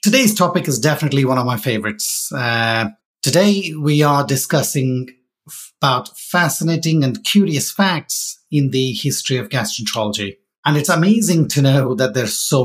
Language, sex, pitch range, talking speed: English, male, 120-150 Hz, 145 wpm